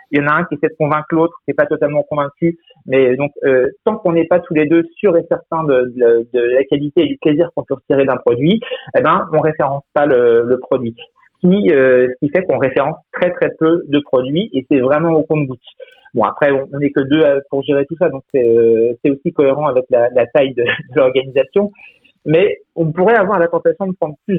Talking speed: 250 wpm